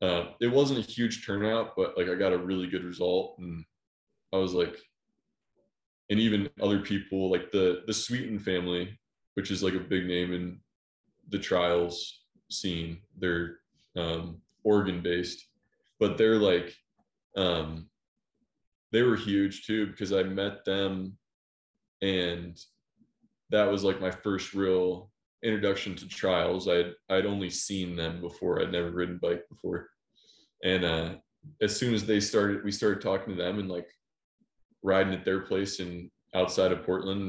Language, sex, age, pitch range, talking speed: English, male, 20-39, 90-100 Hz, 155 wpm